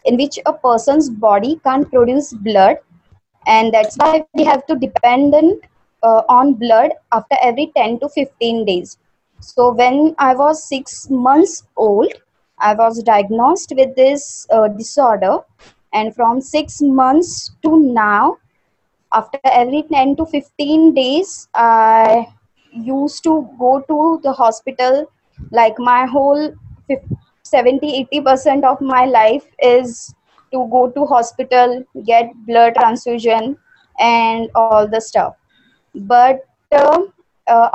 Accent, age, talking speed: Indian, 20-39, 125 wpm